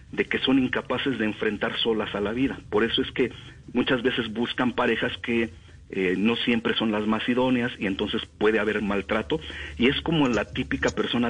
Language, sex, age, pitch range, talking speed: Spanish, male, 50-69, 100-130 Hz, 195 wpm